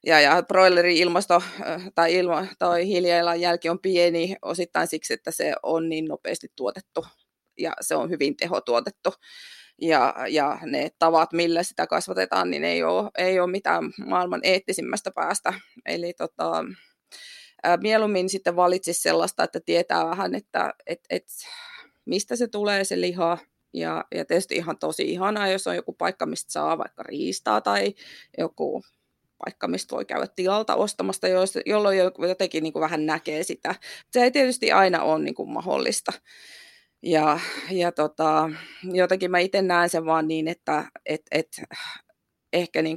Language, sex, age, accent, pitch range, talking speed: Finnish, female, 20-39, native, 160-190 Hz, 135 wpm